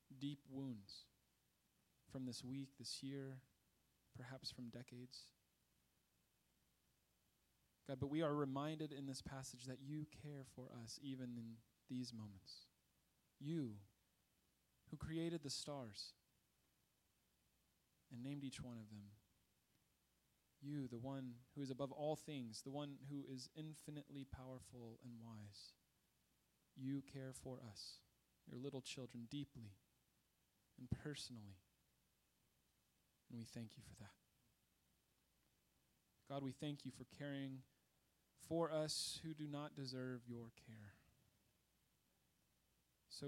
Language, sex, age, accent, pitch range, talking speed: English, male, 20-39, American, 115-140 Hz, 115 wpm